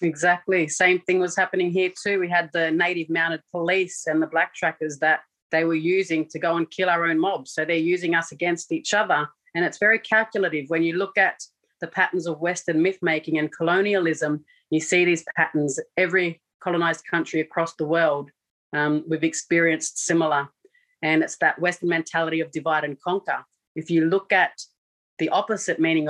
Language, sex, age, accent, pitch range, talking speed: English, female, 30-49, Australian, 155-180 Hz, 185 wpm